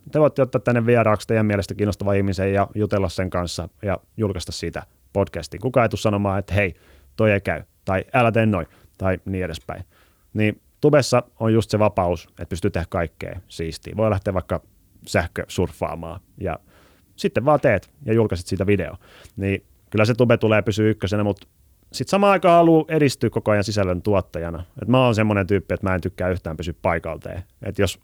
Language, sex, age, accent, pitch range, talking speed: Finnish, male, 30-49, native, 90-110 Hz, 185 wpm